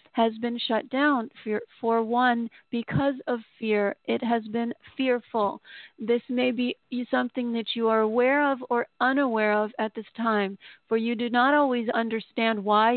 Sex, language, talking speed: female, English, 160 wpm